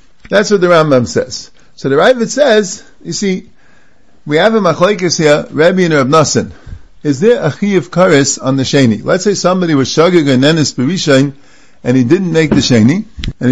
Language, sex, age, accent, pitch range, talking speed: English, male, 50-69, American, 140-195 Hz, 180 wpm